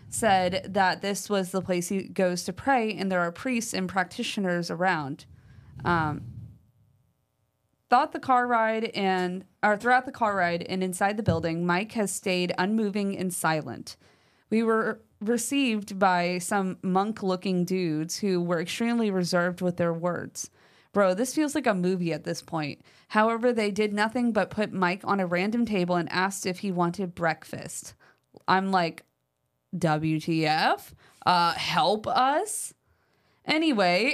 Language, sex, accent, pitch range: English, female, American, 170-215 Hz